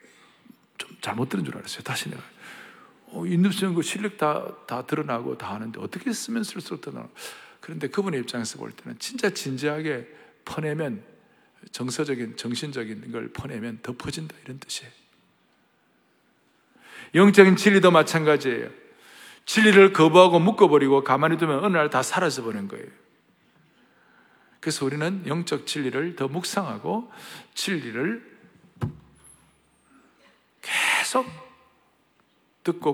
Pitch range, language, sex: 135-210 Hz, Korean, male